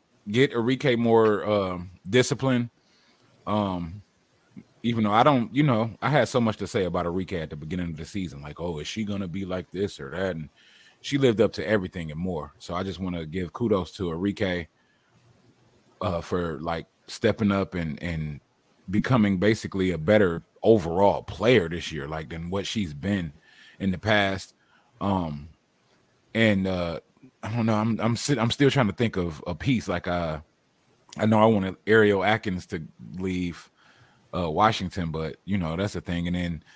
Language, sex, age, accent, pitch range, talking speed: English, male, 30-49, American, 85-110 Hz, 185 wpm